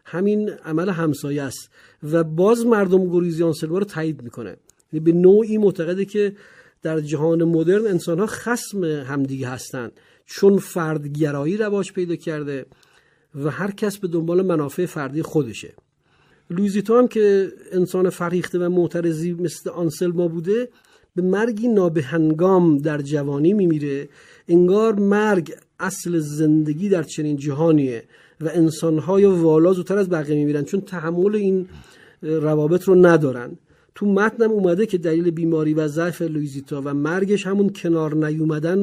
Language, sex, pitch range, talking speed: Persian, male, 155-190 Hz, 135 wpm